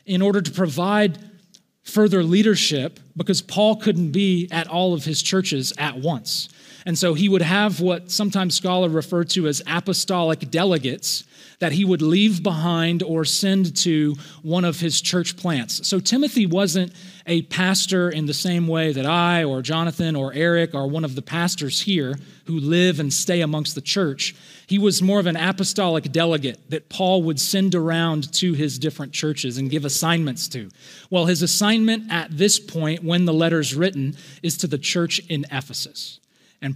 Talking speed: 175 wpm